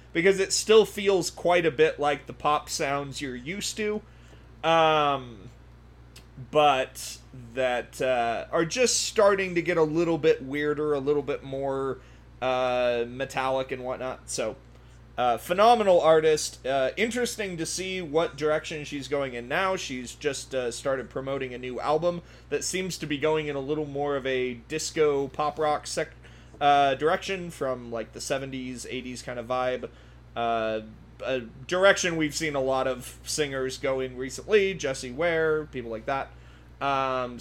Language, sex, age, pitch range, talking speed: English, male, 30-49, 125-160 Hz, 160 wpm